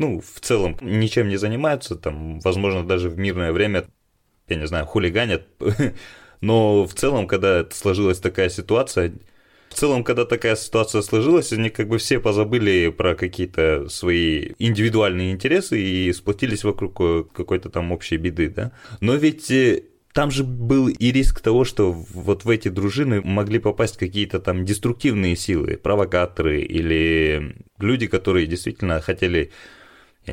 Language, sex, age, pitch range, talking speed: Russian, male, 20-39, 90-110 Hz, 140 wpm